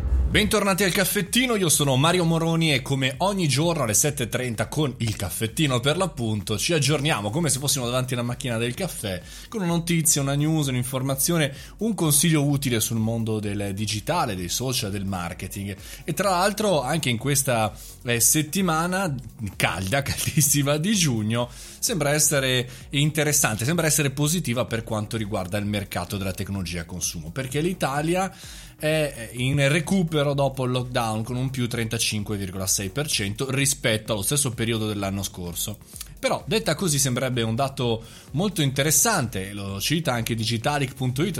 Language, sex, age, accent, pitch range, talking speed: Italian, male, 30-49, native, 110-155 Hz, 145 wpm